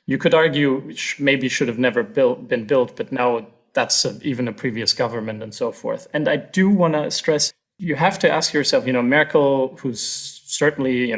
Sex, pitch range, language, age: male, 115-140 Hz, English, 30-49